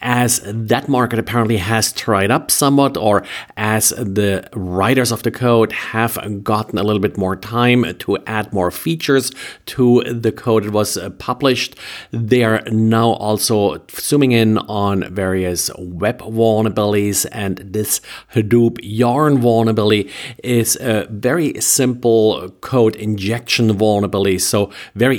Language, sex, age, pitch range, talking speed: English, male, 50-69, 105-125 Hz, 135 wpm